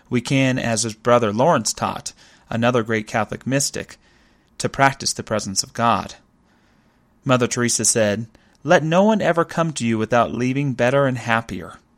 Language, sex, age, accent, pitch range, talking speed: English, male, 30-49, American, 110-140 Hz, 160 wpm